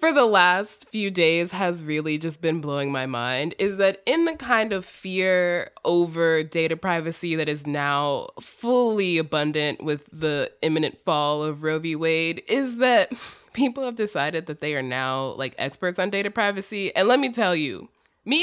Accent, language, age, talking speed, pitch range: American, English, 20-39, 180 wpm, 155-240 Hz